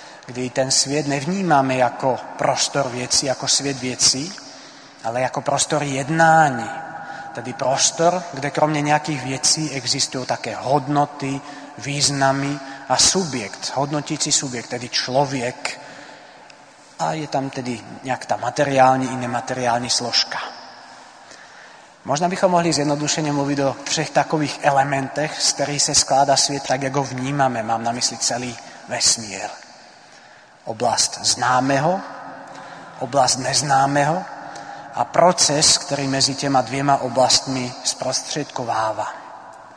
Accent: native